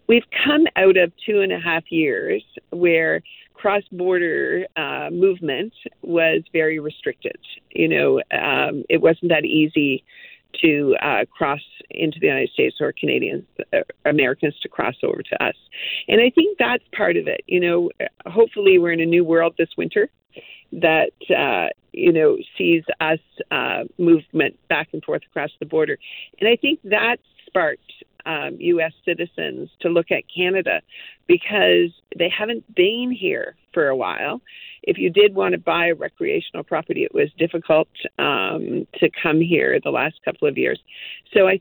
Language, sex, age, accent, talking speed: English, female, 50-69, American, 165 wpm